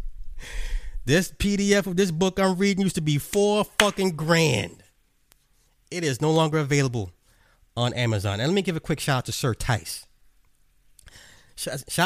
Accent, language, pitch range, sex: American, English, 100-140 Hz, male